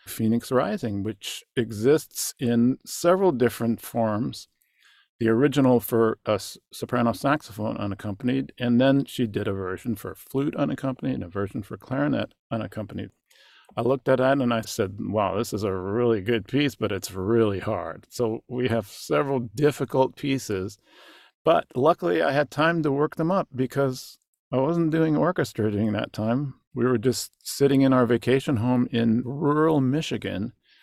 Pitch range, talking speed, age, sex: 110-135 Hz, 160 wpm, 50-69, male